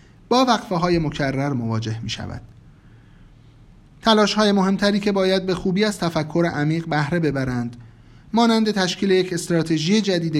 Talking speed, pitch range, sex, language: 140 wpm, 135-200 Hz, male, Persian